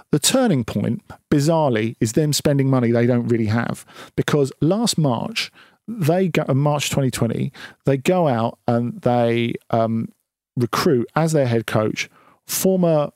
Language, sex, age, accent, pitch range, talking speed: English, male, 40-59, British, 120-170 Hz, 140 wpm